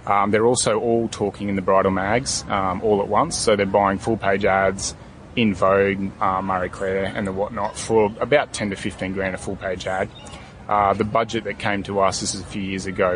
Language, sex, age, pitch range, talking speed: English, male, 30-49, 95-110 Hz, 230 wpm